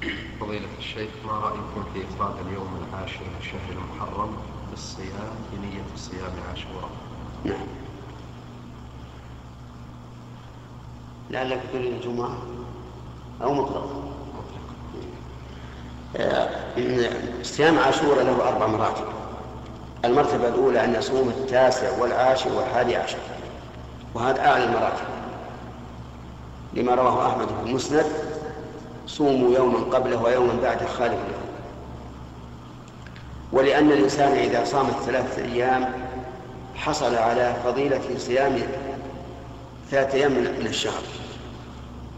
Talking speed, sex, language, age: 85 wpm, male, Arabic, 50-69